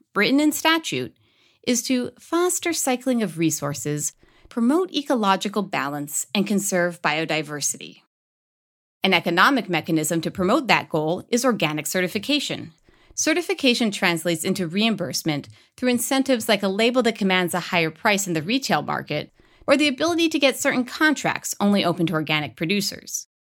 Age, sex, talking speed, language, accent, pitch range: 30-49, female, 140 wpm, English, American, 170-260 Hz